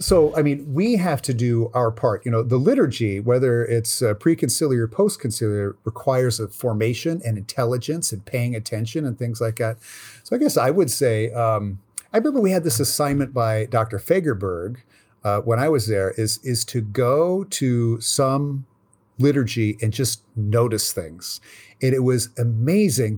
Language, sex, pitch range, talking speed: English, male, 110-135 Hz, 175 wpm